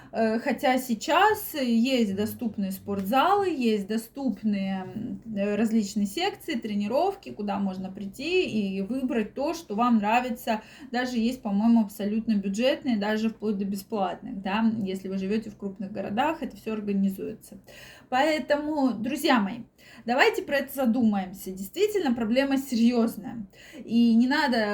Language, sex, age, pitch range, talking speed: Russian, female, 20-39, 215-270 Hz, 120 wpm